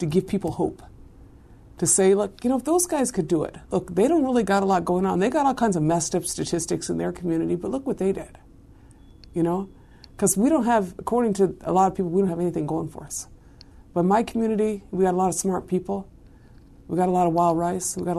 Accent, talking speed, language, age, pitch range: American, 255 wpm, English, 50-69, 175-230 Hz